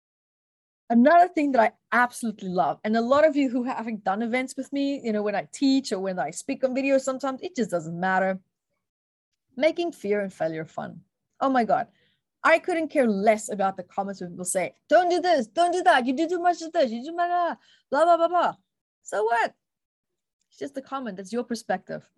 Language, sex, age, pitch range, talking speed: English, female, 20-39, 210-280 Hz, 215 wpm